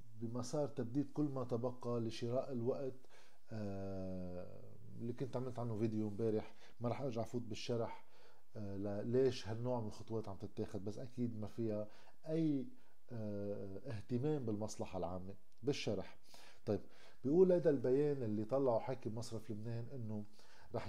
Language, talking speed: Arabic, 125 wpm